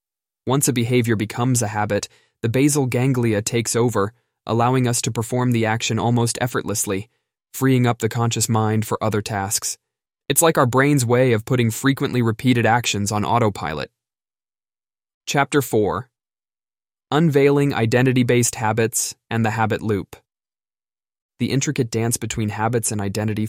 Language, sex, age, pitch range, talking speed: English, male, 20-39, 105-120 Hz, 140 wpm